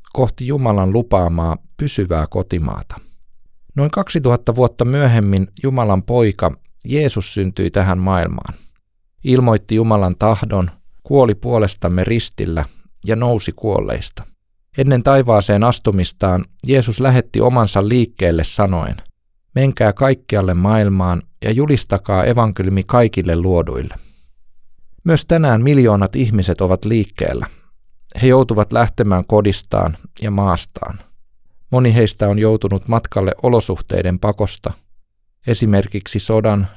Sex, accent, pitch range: male, native, 95-120 Hz